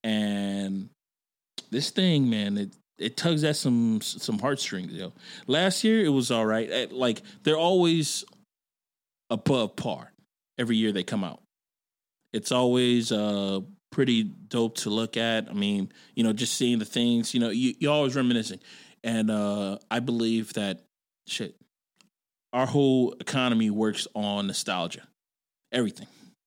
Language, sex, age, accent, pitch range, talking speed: English, male, 20-39, American, 100-120 Hz, 145 wpm